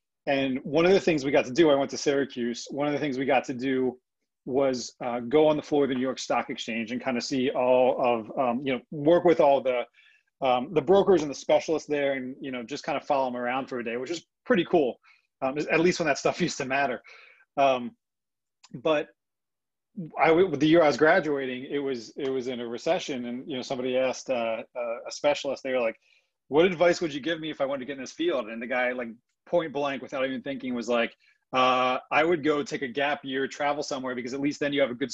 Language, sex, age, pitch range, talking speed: English, male, 30-49, 125-150 Hz, 255 wpm